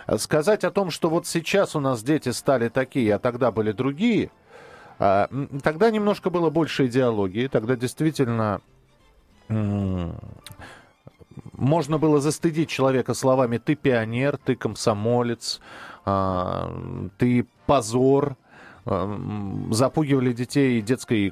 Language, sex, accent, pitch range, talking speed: Russian, male, native, 115-155 Hz, 100 wpm